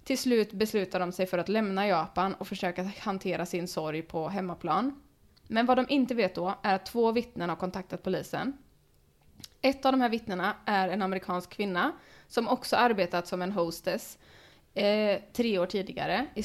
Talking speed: 180 wpm